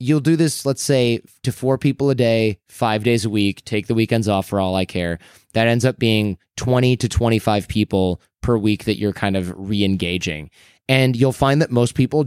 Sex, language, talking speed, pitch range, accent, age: male, English, 210 wpm, 105-130 Hz, American, 20-39